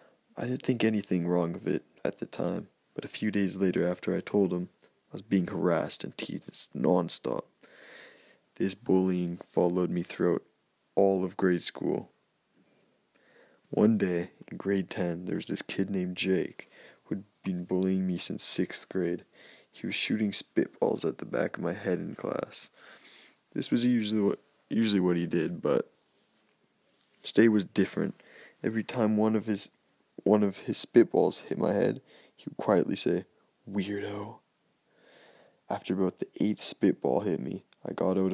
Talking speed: 160 wpm